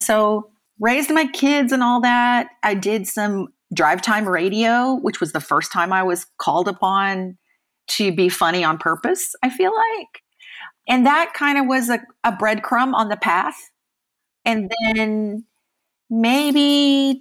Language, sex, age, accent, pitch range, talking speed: English, female, 40-59, American, 180-240 Hz, 150 wpm